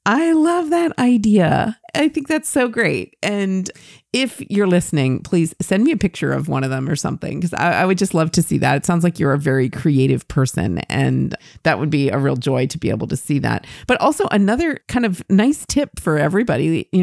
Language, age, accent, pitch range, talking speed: English, 40-59, American, 150-200 Hz, 220 wpm